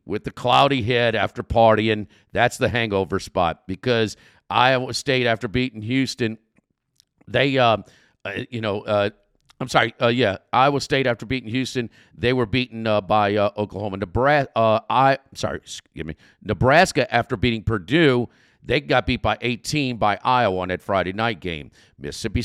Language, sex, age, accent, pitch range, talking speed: English, male, 50-69, American, 105-130 Hz, 165 wpm